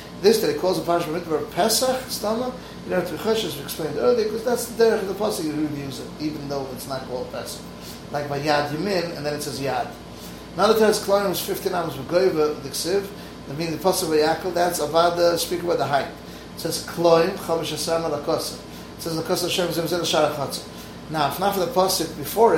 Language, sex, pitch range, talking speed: English, male, 145-185 Hz, 240 wpm